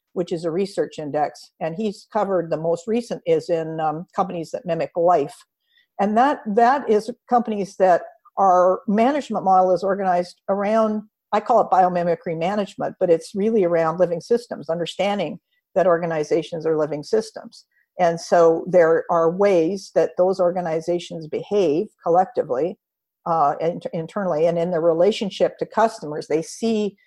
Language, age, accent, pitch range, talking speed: English, 50-69, American, 165-210 Hz, 150 wpm